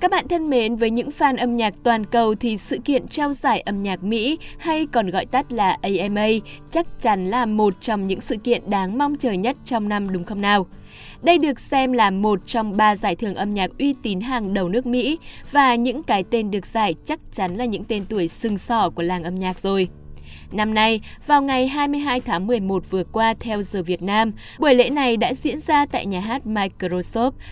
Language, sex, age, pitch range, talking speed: Vietnamese, female, 20-39, 195-255 Hz, 220 wpm